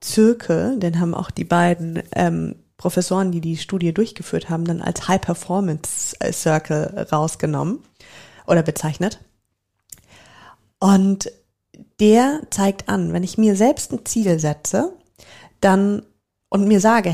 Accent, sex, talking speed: German, female, 120 wpm